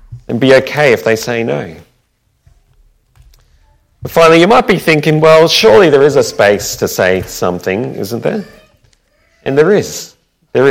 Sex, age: male, 30-49